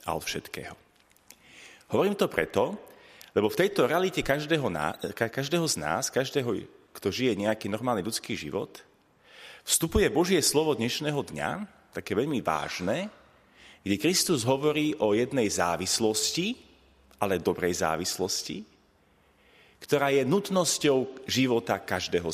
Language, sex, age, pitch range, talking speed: Slovak, male, 30-49, 115-190 Hz, 115 wpm